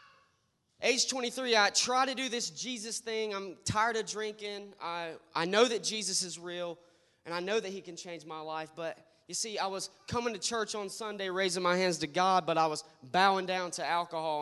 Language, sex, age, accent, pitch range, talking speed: English, male, 20-39, American, 160-205 Hz, 210 wpm